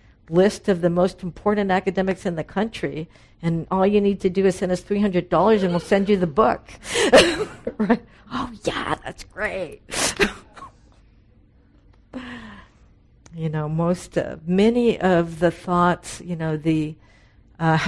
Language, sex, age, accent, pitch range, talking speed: English, female, 50-69, American, 125-185 Hz, 140 wpm